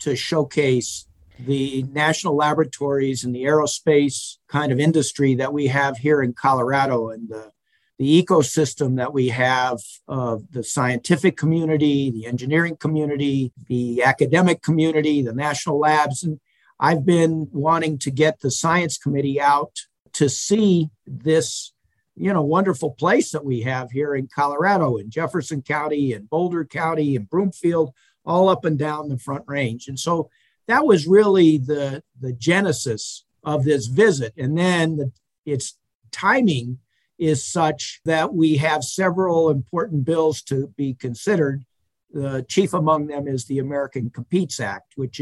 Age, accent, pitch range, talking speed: 50-69, American, 130-165 Hz, 150 wpm